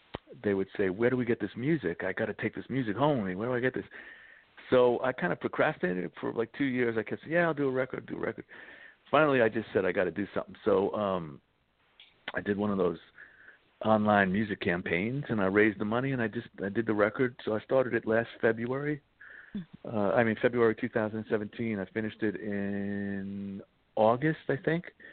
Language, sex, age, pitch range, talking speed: English, male, 50-69, 100-125 Hz, 220 wpm